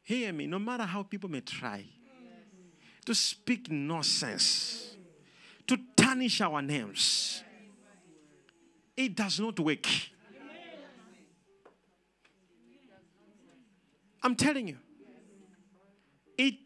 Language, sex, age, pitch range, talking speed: English, male, 50-69, 175-245 Hz, 90 wpm